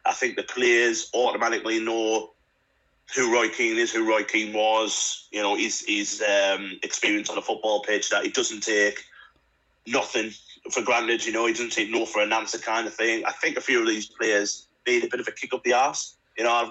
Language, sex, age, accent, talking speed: English, male, 30-49, British, 225 wpm